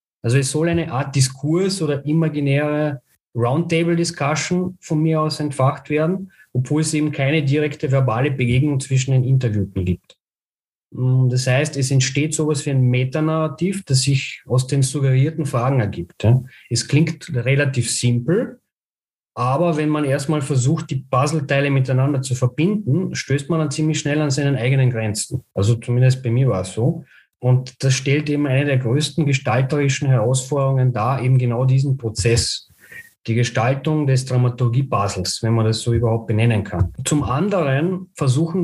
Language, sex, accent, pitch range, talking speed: German, male, German, 125-150 Hz, 150 wpm